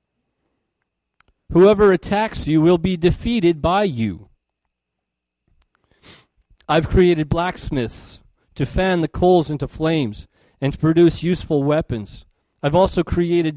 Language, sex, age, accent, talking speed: English, male, 40-59, American, 110 wpm